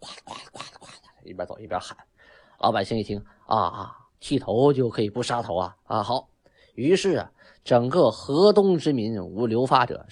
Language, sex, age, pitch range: Chinese, male, 20-39, 95-135 Hz